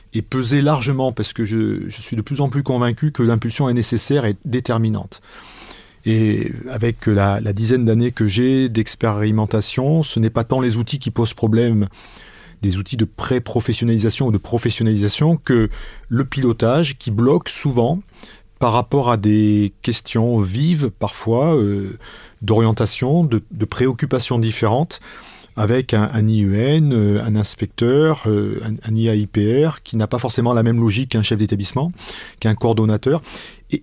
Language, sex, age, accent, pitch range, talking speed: French, male, 40-59, French, 110-135 Hz, 150 wpm